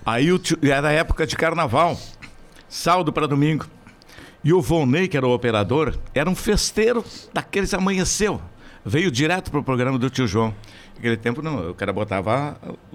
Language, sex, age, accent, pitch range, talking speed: Portuguese, male, 60-79, Brazilian, 115-180 Hz, 165 wpm